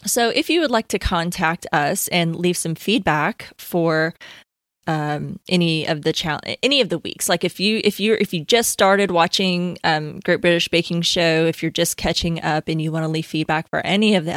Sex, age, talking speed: female, 20-39, 215 wpm